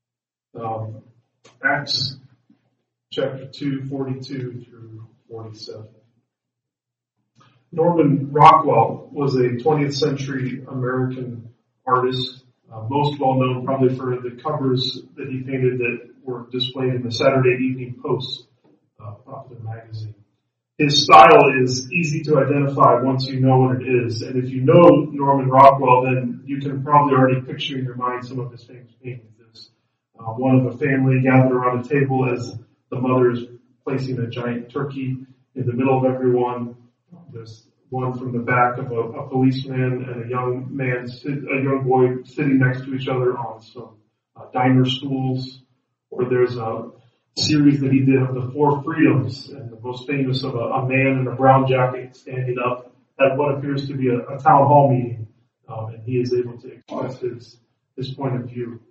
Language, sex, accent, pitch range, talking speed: English, male, American, 125-135 Hz, 170 wpm